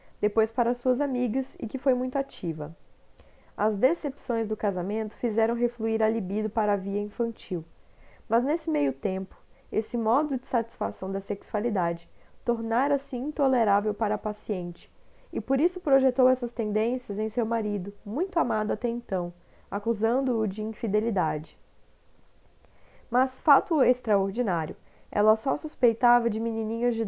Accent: Brazilian